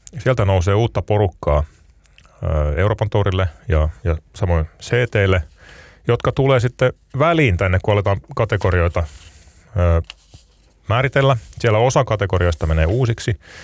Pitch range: 80-100 Hz